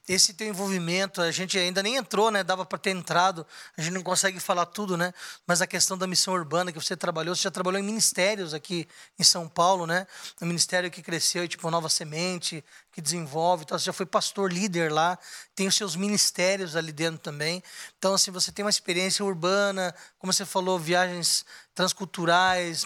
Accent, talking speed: Brazilian, 195 wpm